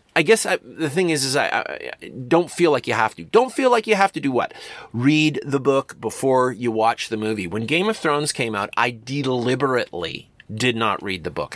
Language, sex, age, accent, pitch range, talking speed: English, male, 30-49, American, 110-145 Hz, 230 wpm